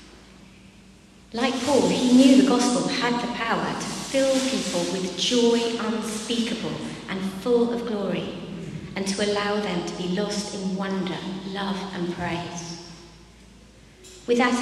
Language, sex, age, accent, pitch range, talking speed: English, female, 40-59, British, 175-205 Hz, 135 wpm